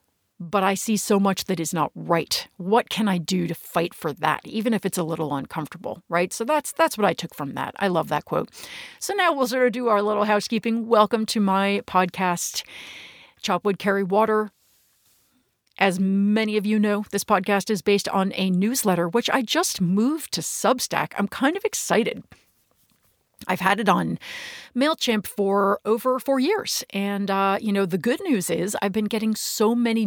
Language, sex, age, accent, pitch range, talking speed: English, female, 50-69, American, 185-235 Hz, 190 wpm